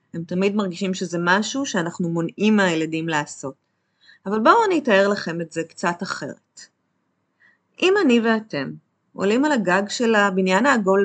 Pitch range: 165-220 Hz